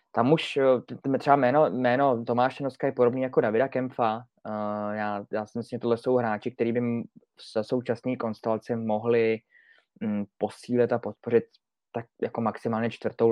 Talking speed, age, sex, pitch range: 160 wpm, 20-39, male, 110-125 Hz